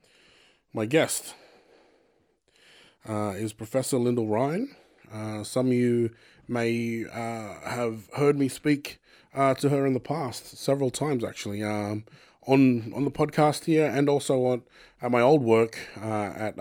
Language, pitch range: English, 110-130 Hz